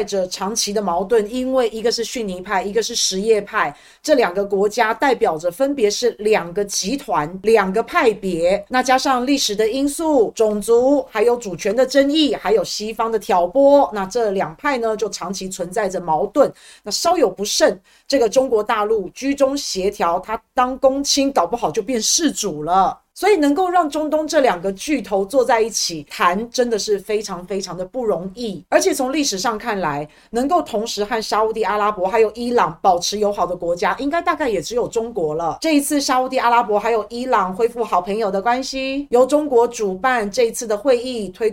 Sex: female